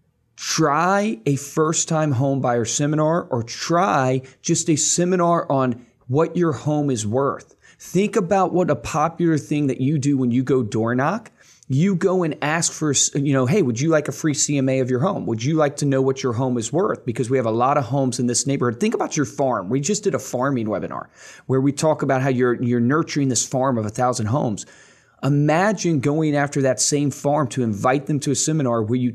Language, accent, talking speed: English, American, 220 wpm